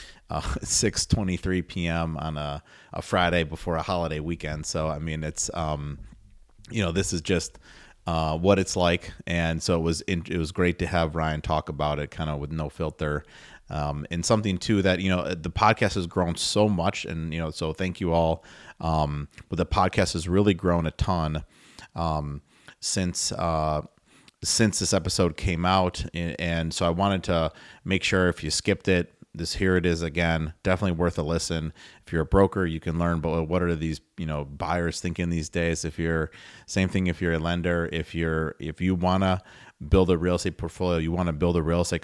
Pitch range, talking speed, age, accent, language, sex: 80-90 Hz, 210 wpm, 30-49, American, English, male